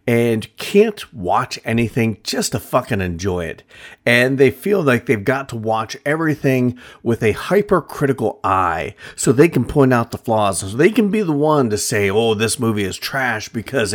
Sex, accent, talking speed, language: male, American, 185 wpm, English